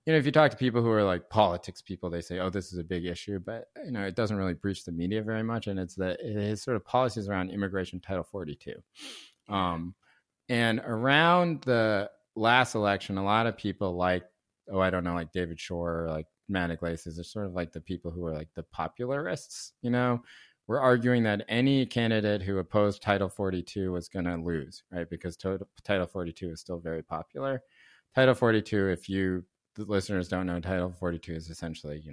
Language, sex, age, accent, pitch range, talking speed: English, male, 30-49, American, 85-105 Hz, 210 wpm